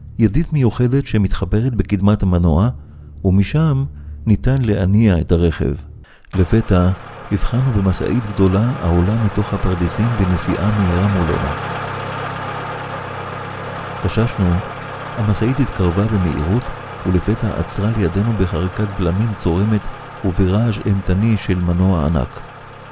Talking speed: 90 wpm